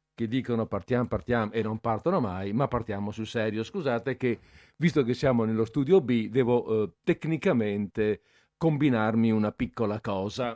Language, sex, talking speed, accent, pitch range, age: Italian, male, 155 wpm, native, 105-130 Hz, 50-69